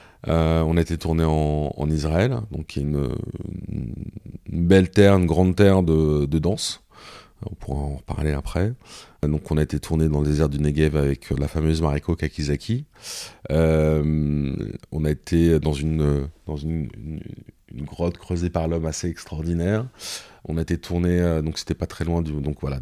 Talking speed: 175 wpm